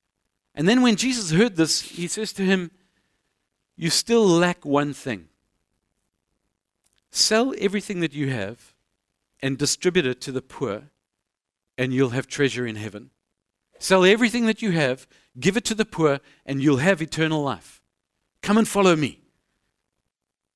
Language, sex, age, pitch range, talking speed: English, male, 50-69, 150-205 Hz, 150 wpm